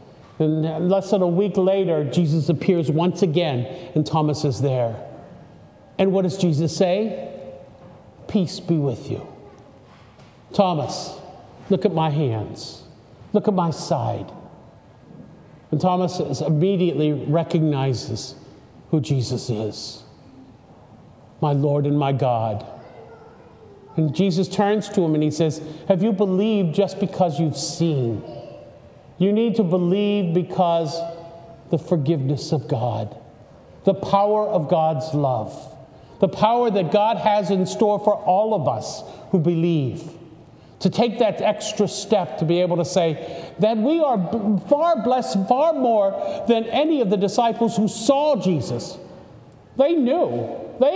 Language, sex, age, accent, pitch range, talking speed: English, male, 50-69, American, 150-205 Hz, 135 wpm